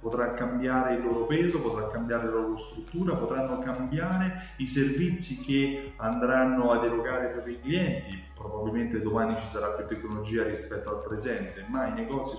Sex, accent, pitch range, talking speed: male, native, 110-145 Hz, 165 wpm